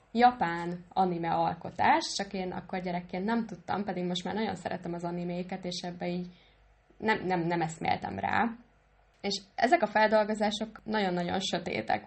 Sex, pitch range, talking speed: female, 180-215 Hz, 150 wpm